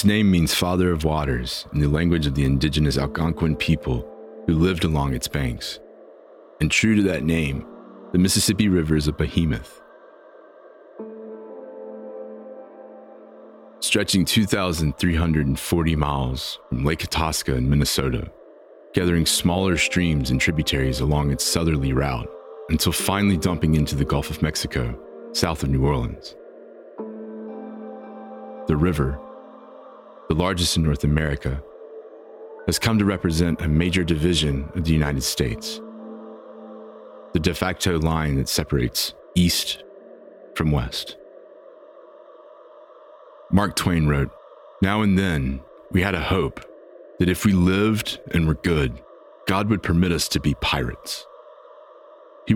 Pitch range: 75-95 Hz